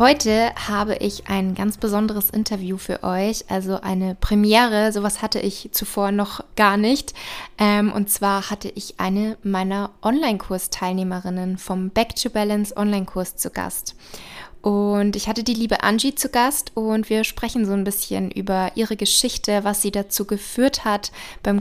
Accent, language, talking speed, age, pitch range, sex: German, German, 150 wpm, 20-39, 195-225 Hz, female